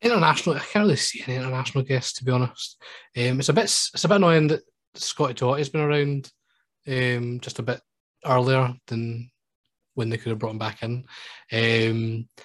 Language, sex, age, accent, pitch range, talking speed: English, male, 20-39, British, 110-135 Hz, 195 wpm